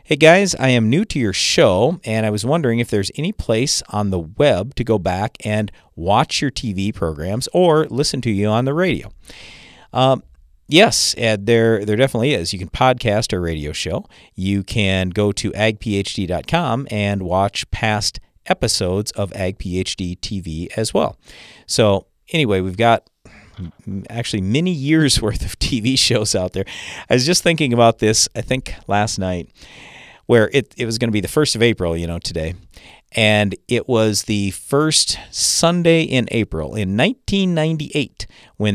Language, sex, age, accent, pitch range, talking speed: English, male, 50-69, American, 100-130 Hz, 170 wpm